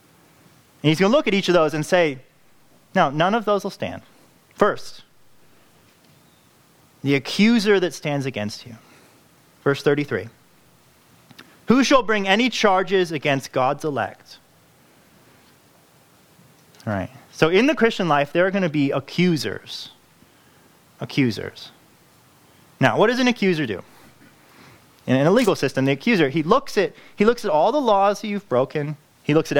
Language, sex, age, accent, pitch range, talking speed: English, male, 30-49, American, 135-190 Hz, 150 wpm